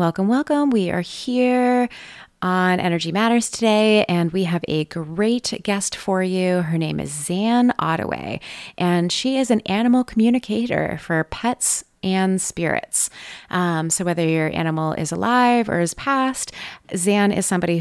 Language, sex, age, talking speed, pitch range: English, female, 20-39, 150 wpm, 170-230 Hz